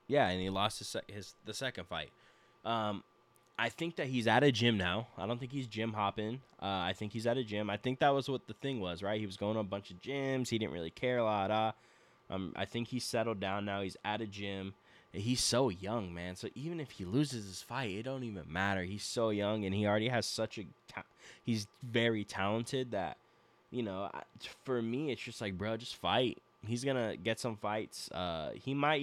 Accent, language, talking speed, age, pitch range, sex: American, English, 235 wpm, 10-29, 95-120 Hz, male